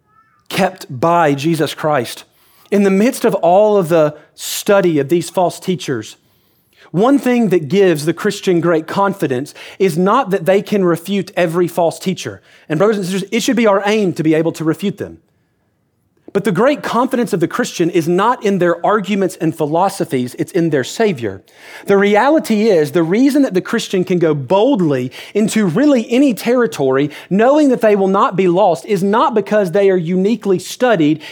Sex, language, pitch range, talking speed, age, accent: male, English, 175-225 Hz, 180 wpm, 40-59, American